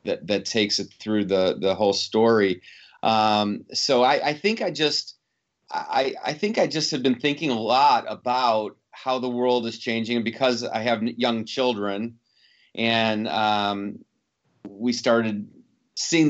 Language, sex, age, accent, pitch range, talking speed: English, male, 30-49, American, 105-130 Hz, 160 wpm